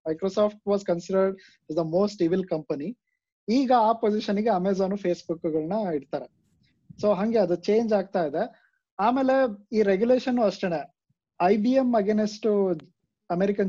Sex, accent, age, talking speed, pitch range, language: male, native, 20-39, 140 wpm, 175-225 Hz, Kannada